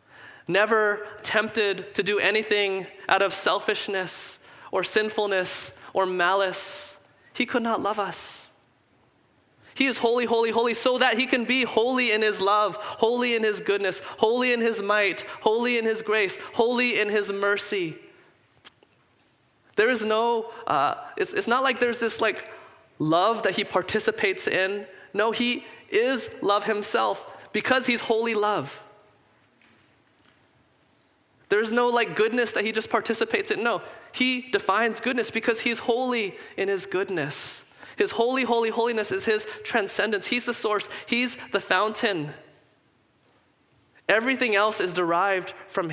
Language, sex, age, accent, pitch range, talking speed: English, male, 20-39, American, 195-240 Hz, 140 wpm